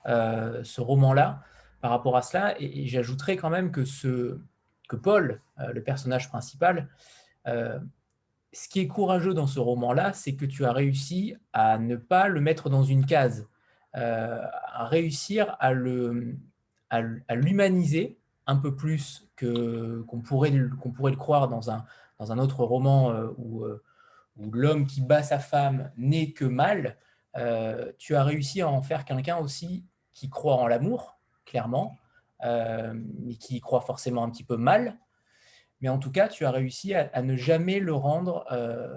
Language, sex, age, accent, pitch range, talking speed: French, male, 20-39, French, 120-155 Hz, 175 wpm